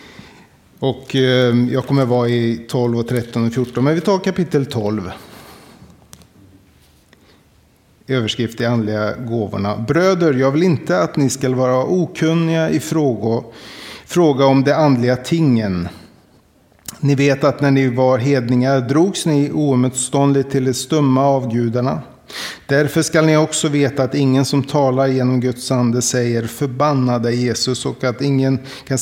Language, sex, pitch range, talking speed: Swedish, male, 125-150 Hz, 140 wpm